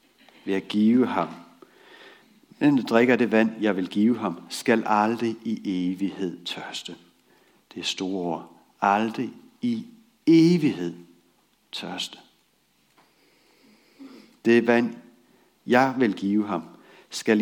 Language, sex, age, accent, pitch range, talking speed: Danish, male, 60-79, native, 90-130 Hz, 105 wpm